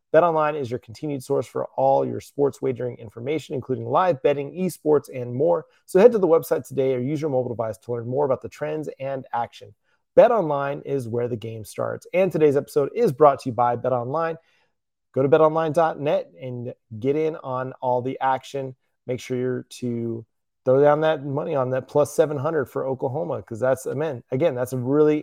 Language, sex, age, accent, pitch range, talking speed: English, male, 30-49, American, 130-155 Hz, 195 wpm